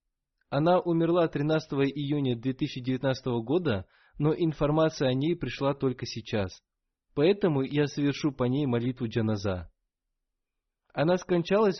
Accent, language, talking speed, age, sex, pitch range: native, Russian, 110 wpm, 20-39, male, 120-160 Hz